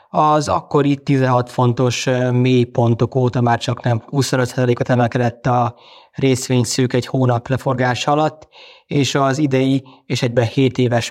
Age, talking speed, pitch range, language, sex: 20-39, 135 wpm, 120-135 Hz, Hungarian, male